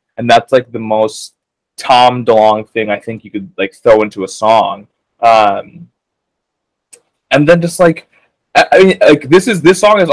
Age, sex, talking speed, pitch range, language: 20-39, male, 180 wpm, 110-145 Hz, English